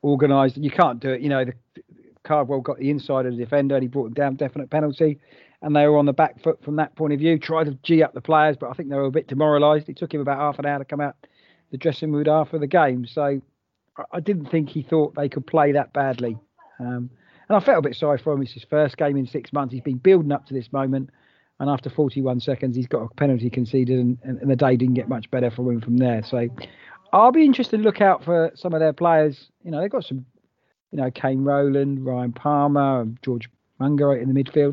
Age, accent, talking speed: 40-59, British, 255 wpm